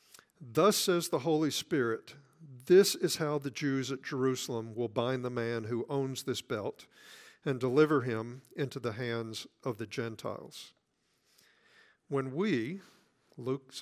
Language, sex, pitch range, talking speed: English, male, 130-165 Hz, 140 wpm